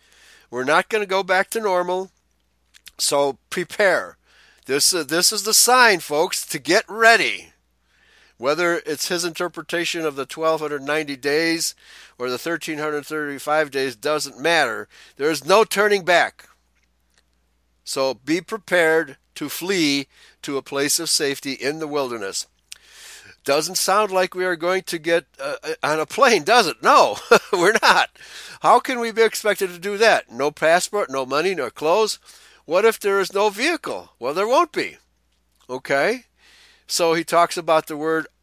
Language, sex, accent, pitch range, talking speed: English, male, American, 140-195 Hz, 155 wpm